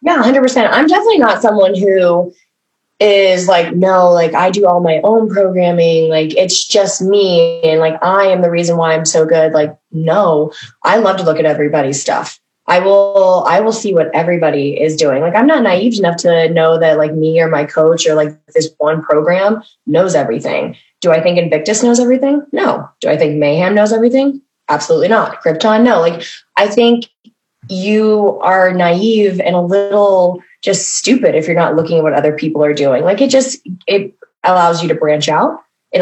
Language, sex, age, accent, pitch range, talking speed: English, female, 20-39, American, 160-200 Hz, 195 wpm